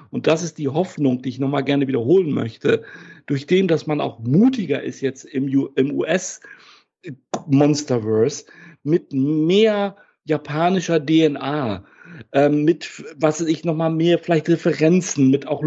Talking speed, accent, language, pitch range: 150 wpm, German, German, 135-165 Hz